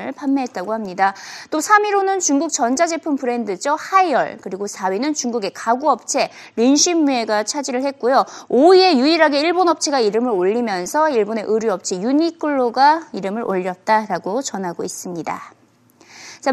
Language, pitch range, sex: Korean, 225-320 Hz, female